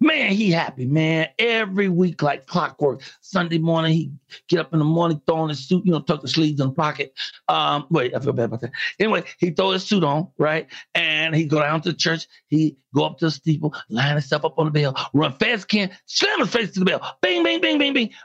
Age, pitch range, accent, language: 60-79, 145-200 Hz, American, English